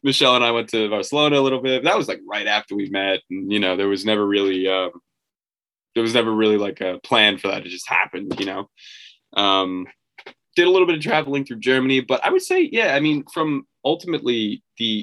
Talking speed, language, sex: 230 wpm, English, male